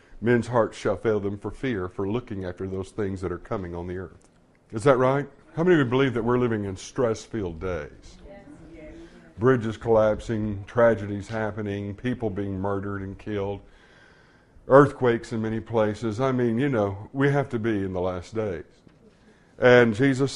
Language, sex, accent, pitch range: English, male, American, 105-125 Hz